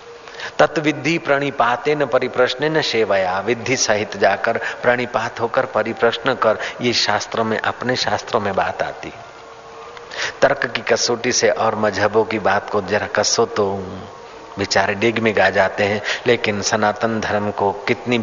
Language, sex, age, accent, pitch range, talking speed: Hindi, male, 50-69, native, 105-120 Hz, 150 wpm